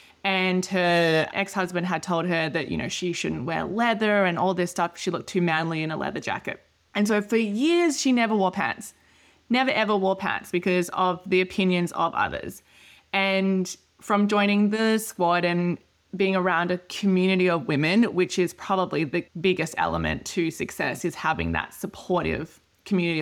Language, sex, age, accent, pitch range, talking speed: English, female, 20-39, Australian, 175-205 Hz, 175 wpm